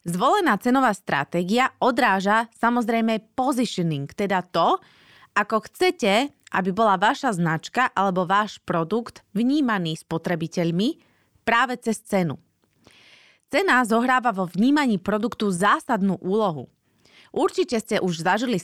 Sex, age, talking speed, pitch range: female, 30-49, 105 wpm, 175-240 Hz